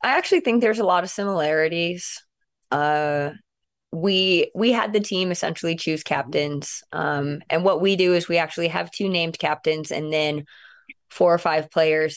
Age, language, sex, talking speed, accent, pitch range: 20-39, English, female, 175 wpm, American, 150-170 Hz